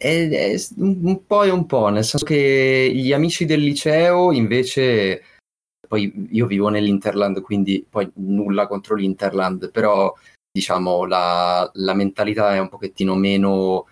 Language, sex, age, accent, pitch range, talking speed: Italian, male, 30-49, native, 95-105 Hz, 140 wpm